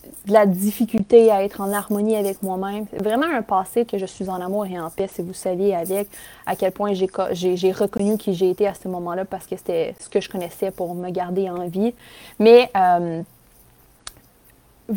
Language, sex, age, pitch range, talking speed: English, female, 20-39, 185-220 Hz, 205 wpm